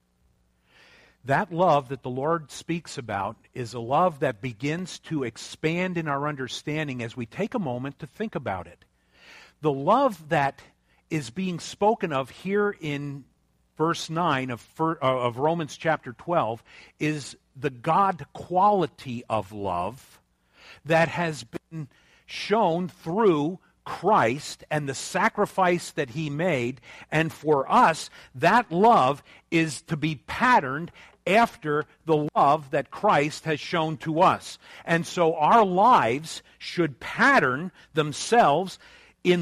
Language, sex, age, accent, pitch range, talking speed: English, male, 50-69, American, 125-185 Hz, 130 wpm